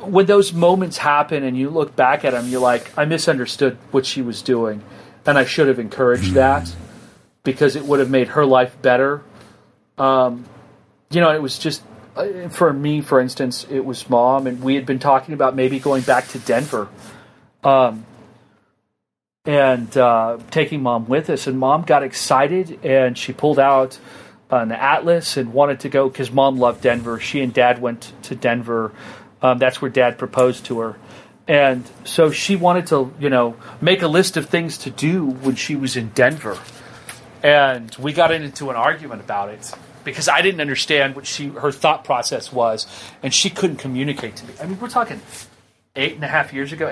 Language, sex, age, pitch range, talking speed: English, male, 40-59, 125-150 Hz, 190 wpm